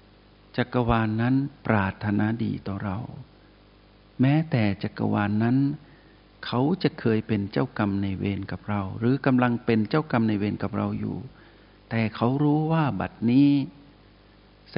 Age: 60-79